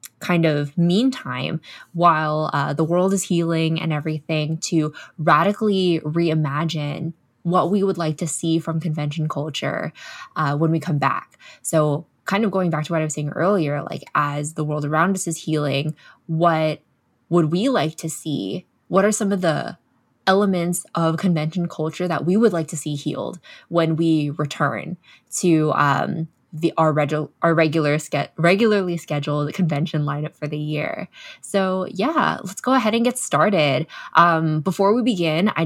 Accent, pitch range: American, 150-180 Hz